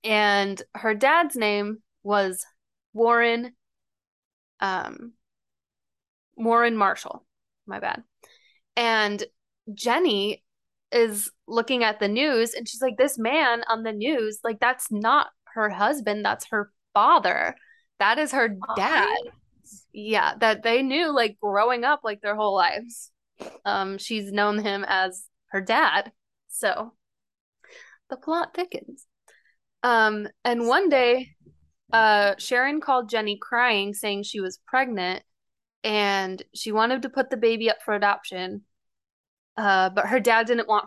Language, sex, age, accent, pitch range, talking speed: English, female, 10-29, American, 205-235 Hz, 130 wpm